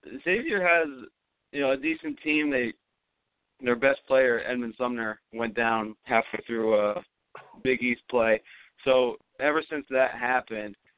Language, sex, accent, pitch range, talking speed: English, male, American, 115-130 Hz, 140 wpm